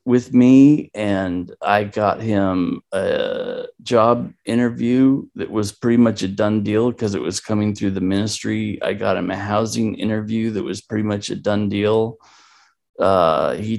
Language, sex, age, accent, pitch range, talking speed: English, male, 40-59, American, 105-150 Hz, 165 wpm